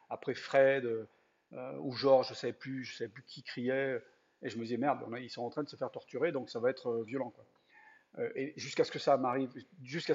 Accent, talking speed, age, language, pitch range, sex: French, 250 wpm, 40-59, French, 125-160 Hz, male